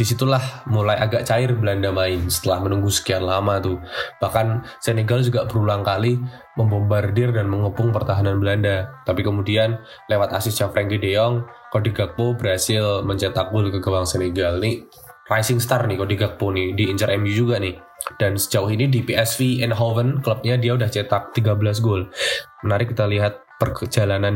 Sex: male